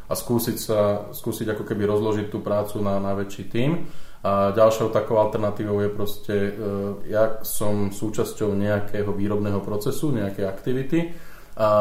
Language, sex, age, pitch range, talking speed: Slovak, male, 20-39, 100-110 Hz, 140 wpm